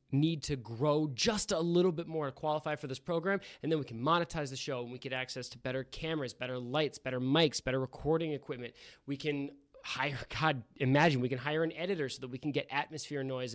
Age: 20-39